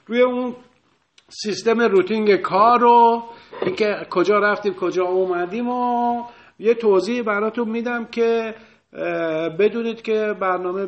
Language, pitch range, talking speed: Persian, 165-210 Hz, 110 wpm